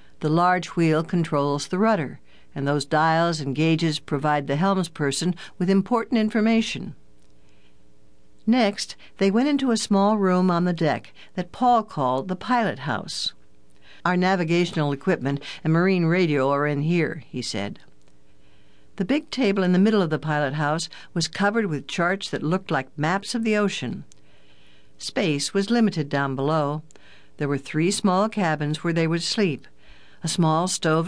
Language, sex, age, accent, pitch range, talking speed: English, female, 60-79, American, 145-195 Hz, 160 wpm